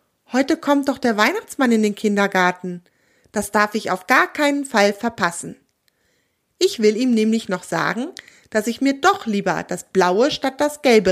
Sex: female